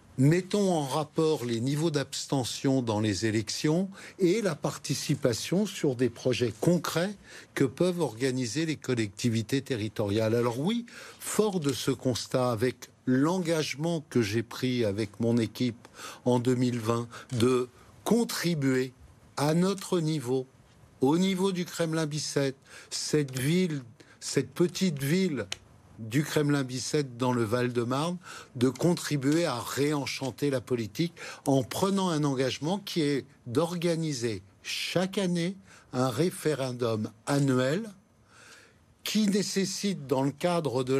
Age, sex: 60-79, male